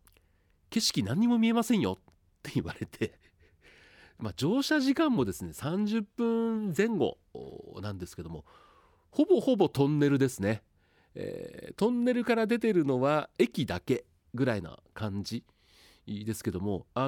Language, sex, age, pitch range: Japanese, male, 40-59, 90-150 Hz